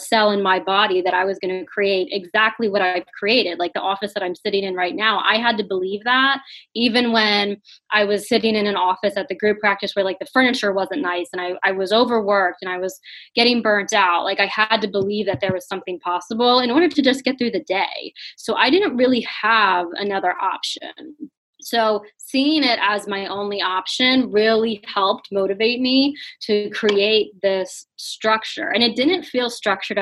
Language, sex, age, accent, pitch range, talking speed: English, female, 20-39, American, 195-245 Hz, 205 wpm